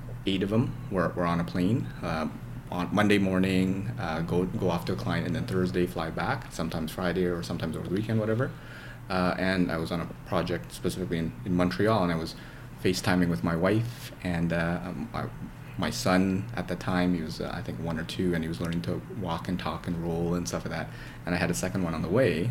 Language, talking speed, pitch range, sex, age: English, 235 wpm, 85-110 Hz, male, 30-49